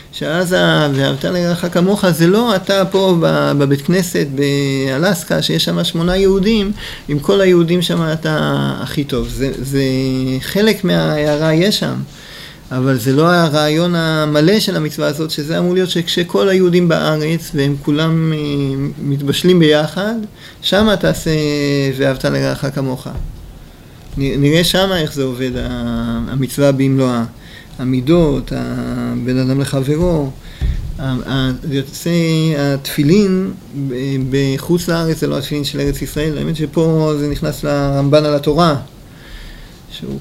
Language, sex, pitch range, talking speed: Hebrew, male, 135-175 Hz, 120 wpm